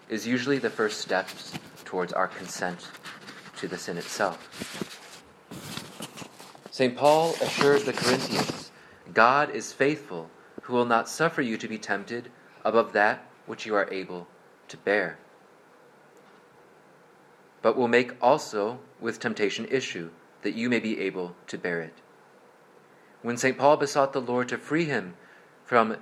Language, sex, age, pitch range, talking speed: English, male, 30-49, 110-140 Hz, 140 wpm